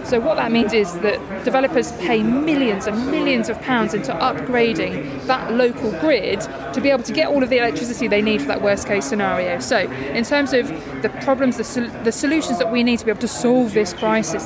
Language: English